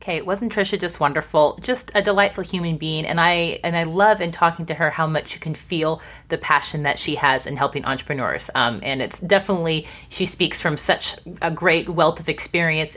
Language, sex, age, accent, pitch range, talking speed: English, female, 30-49, American, 150-180 Hz, 210 wpm